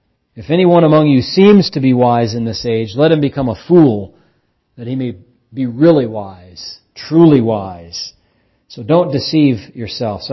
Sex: male